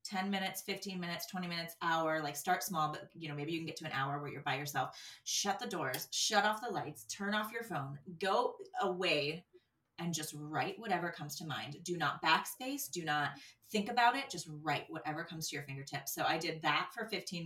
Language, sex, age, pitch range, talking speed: English, female, 20-39, 145-185 Hz, 225 wpm